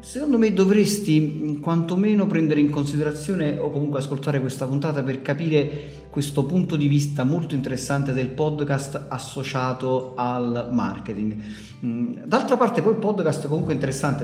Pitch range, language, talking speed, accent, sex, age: 125-150 Hz, Italian, 140 wpm, native, male, 40-59